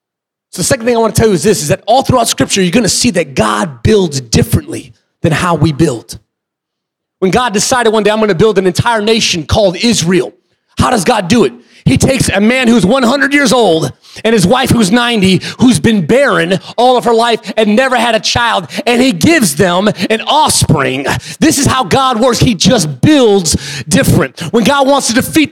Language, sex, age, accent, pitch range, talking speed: English, male, 30-49, American, 200-255 Hz, 215 wpm